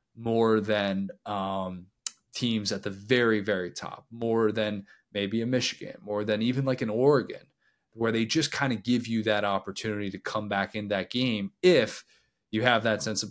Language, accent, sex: English, American, male